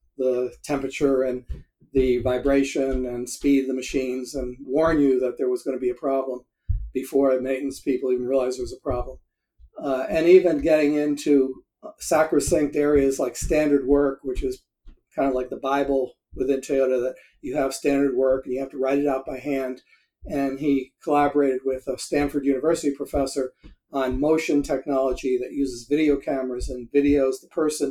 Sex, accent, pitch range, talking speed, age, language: male, American, 130-145 Hz, 175 wpm, 50-69, English